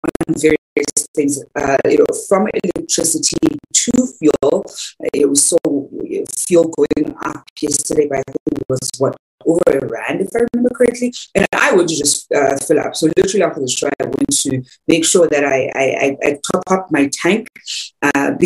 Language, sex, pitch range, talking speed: English, female, 145-205 Hz, 180 wpm